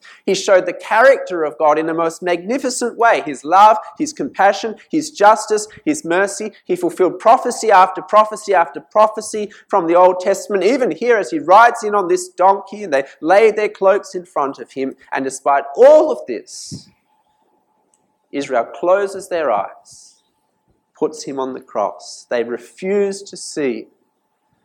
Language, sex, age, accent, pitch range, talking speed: English, male, 30-49, Australian, 145-215 Hz, 160 wpm